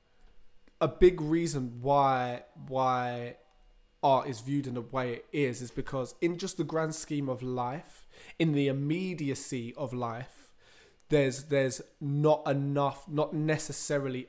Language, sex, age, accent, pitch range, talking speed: English, male, 20-39, British, 125-145 Hz, 140 wpm